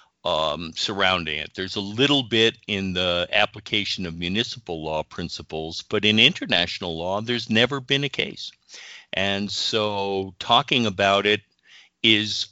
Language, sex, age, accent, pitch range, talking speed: English, male, 50-69, American, 90-110 Hz, 135 wpm